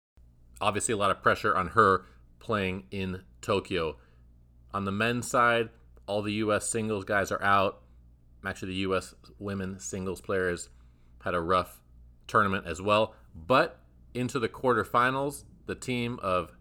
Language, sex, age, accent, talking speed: English, male, 30-49, American, 145 wpm